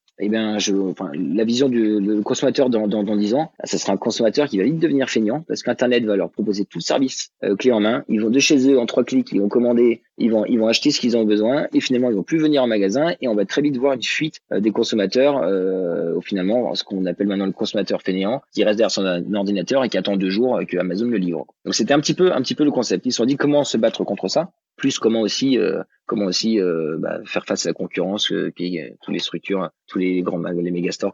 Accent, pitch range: French, 95-125 Hz